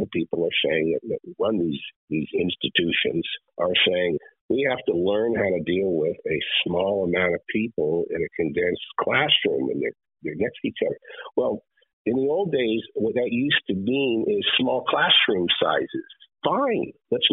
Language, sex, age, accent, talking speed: English, male, 50-69, American, 175 wpm